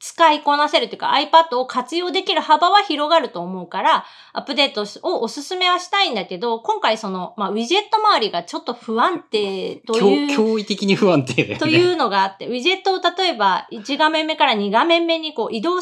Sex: female